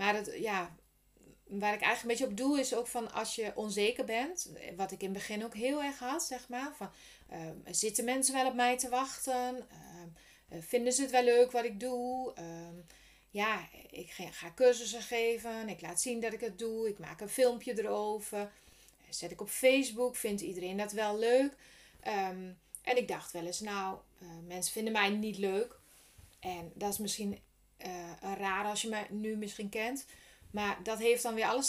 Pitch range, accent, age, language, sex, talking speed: 190-235 Hz, Dutch, 30-49, Dutch, female, 195 wpm